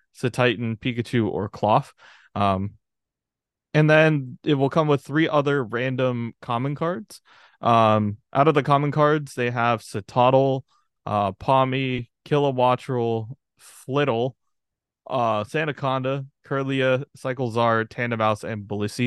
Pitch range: 115-140 Hz